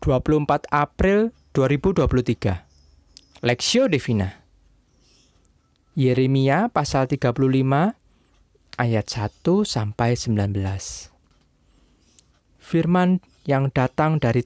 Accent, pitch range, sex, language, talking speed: native, 105-145 Hz, male, Indonesian, 65 wpm